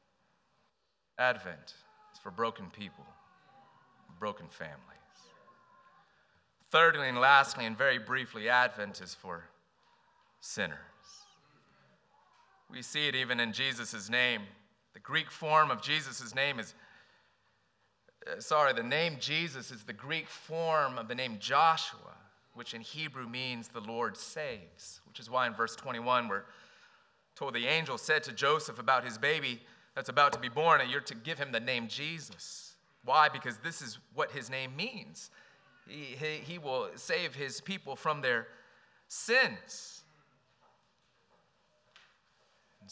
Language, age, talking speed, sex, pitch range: English, 30-49, 135 wpm, male, 115-155 Hz